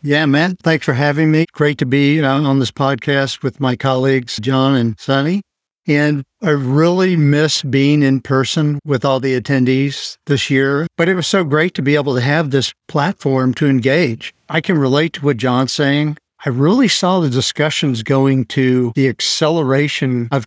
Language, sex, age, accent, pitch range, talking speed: English, male, 50-69, American, 130-155 Hz, 180 wpm